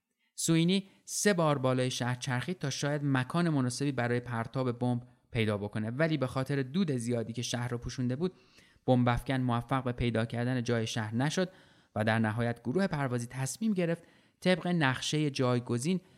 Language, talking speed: Persian, 160 wpm